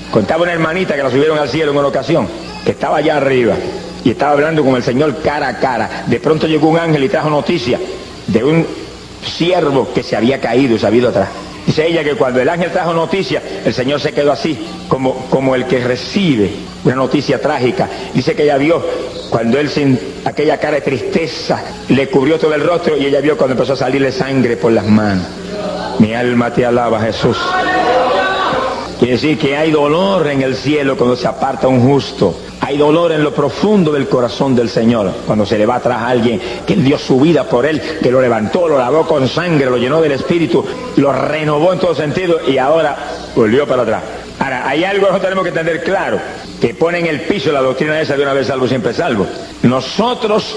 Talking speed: 210 wpm